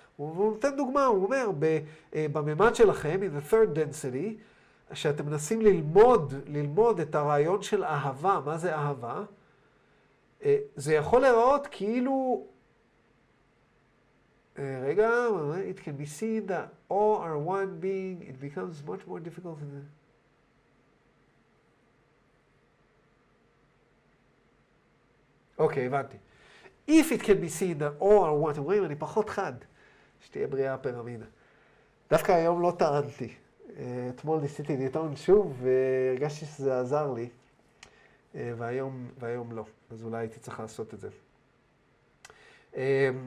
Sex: male